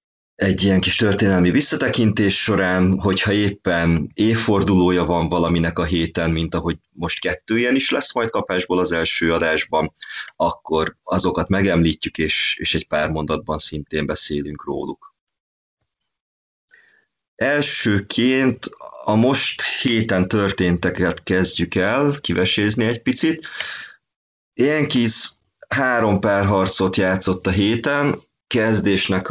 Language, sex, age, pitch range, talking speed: Hungarian, male, 30-49, 85-110 Hz, 110 wpm